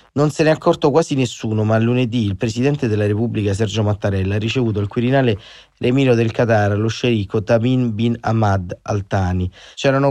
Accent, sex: native, male